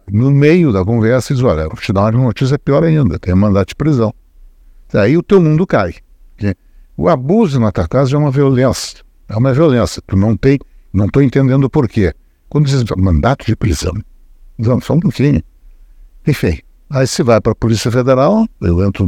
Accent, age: Brazilian, 60-79